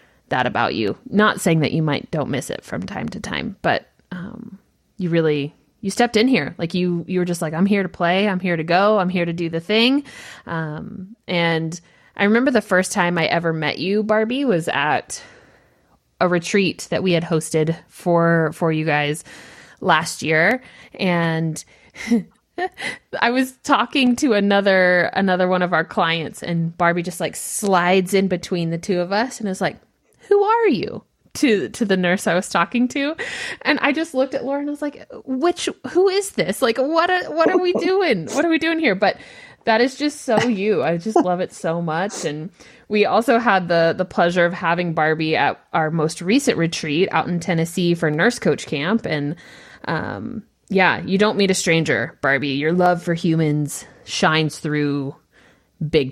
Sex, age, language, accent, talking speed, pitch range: female, 20-39, English, American, 190 wpm, 165-230 Hz